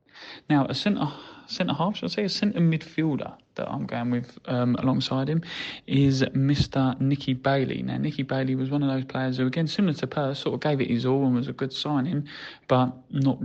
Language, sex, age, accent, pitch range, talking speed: English, male, 20-39, British, 120-145 Hz, 205 wpm